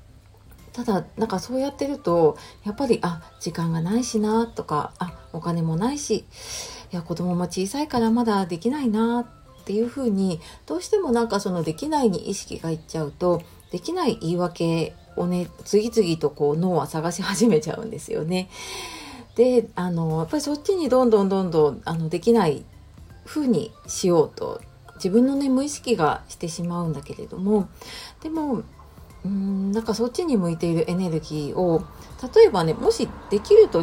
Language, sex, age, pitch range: Japanese, female, 40-59, 165-235 Hz